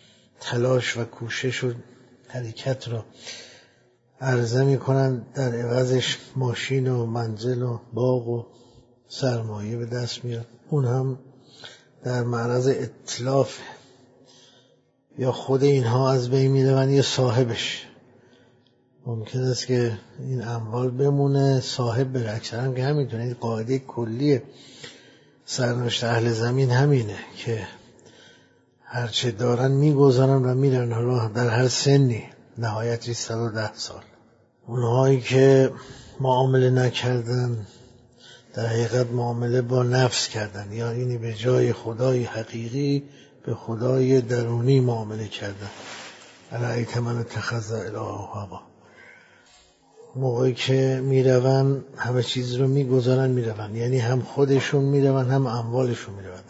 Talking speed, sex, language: 110 wpm, male, Persian